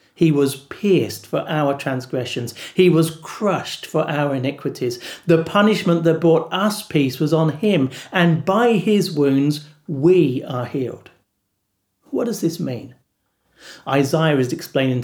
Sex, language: male, English